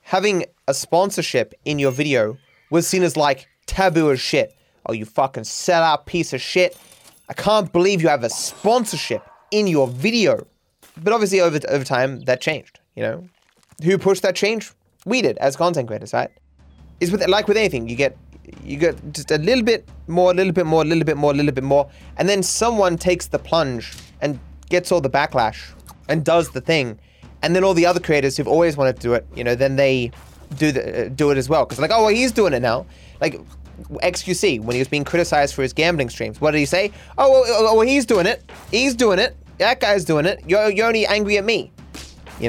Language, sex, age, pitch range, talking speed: English, male, 20-39, 125-180 Hz, 220 wpm